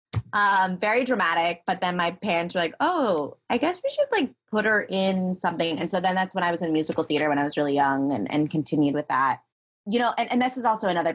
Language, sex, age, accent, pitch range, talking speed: English, female, 20-39, American, 160-225 Hz, 255 wpm